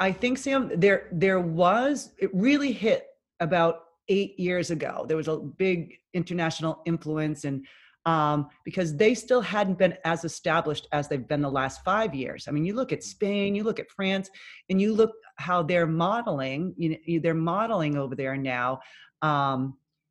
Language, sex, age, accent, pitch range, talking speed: English, female, 30-49, American, 150-195 Hz, 175 wpm